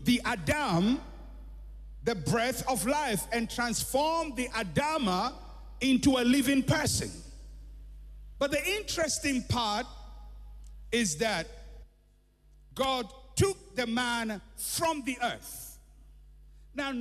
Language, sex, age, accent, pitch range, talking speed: English, male, 50-69, Nigerian, 170-255 Hz, 100 wpm